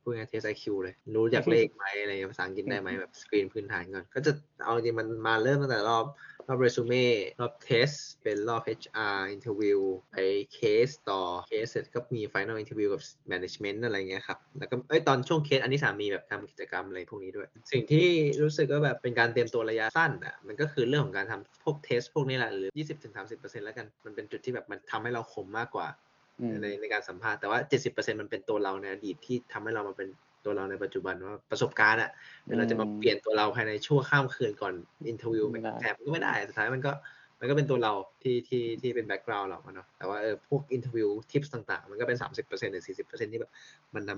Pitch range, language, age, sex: 110-150 Hz, Thai, 20-39, male